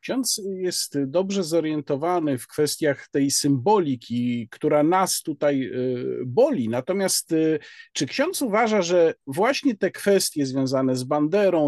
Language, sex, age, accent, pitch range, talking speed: Polish, male, 50-69, native, 145-200 Hz, 120 wpm